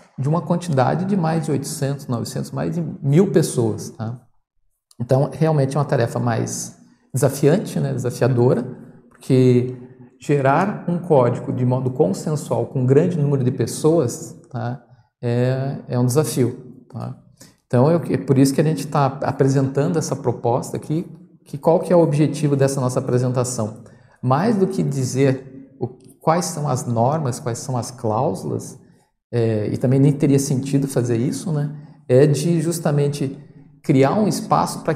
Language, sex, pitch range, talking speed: Portuguese, male, 125-155 Hz, 150 wpm